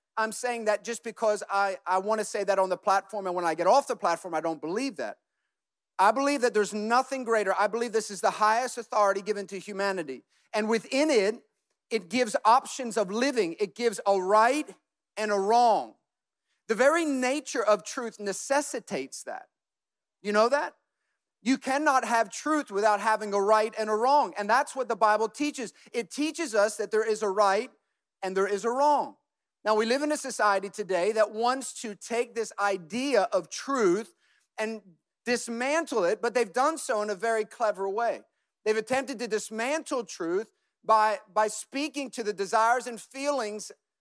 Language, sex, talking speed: English, male, 185 wpm